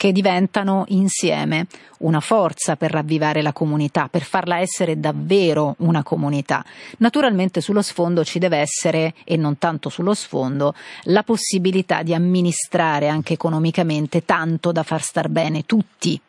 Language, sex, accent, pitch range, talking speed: Italian, female, native, 165-200 Hz, 140 wpm